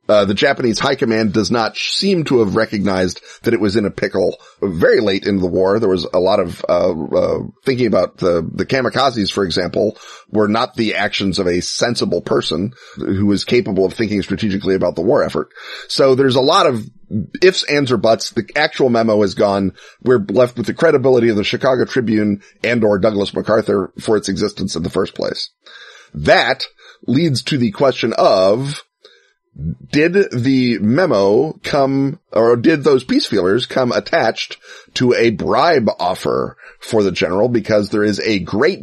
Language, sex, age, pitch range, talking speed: English, male, 30-49, 105-135 Hz, 180 wpm